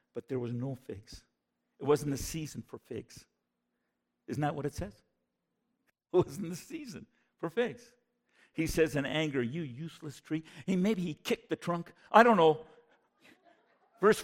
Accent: American